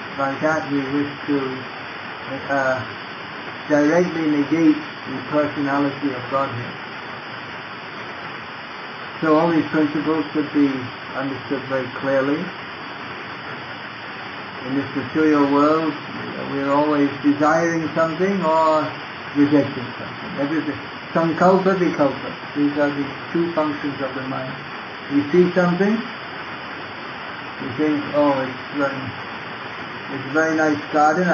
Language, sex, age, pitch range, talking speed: English, male, 60-79, 135-155 Hz, 115 wpm